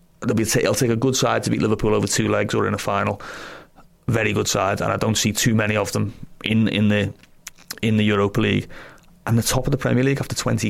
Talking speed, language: 240 wpm, English